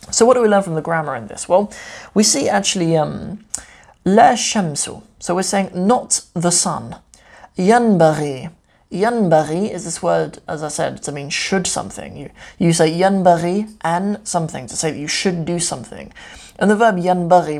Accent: British